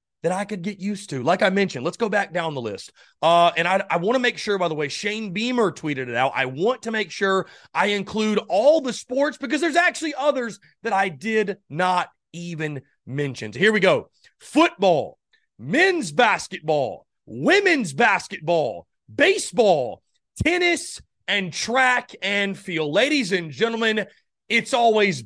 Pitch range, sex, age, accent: 165-230 Hz, male, 30-49, American